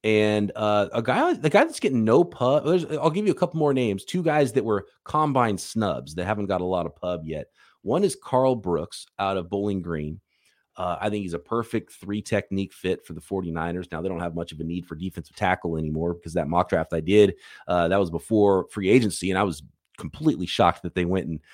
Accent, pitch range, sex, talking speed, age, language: American, 90-110 Hz, male, 235 wpm, 30-49, English